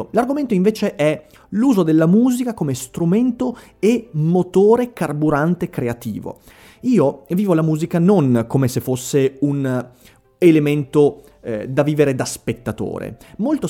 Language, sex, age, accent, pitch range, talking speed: Italian, male, 30-49, native, 125-205 Hz, 125 wpm